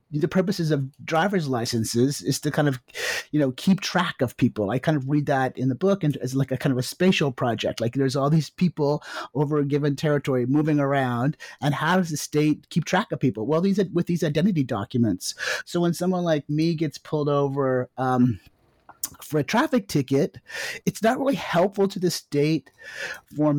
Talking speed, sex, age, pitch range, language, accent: 205 wpm, male, 30-49, 130-160 Hz, English, American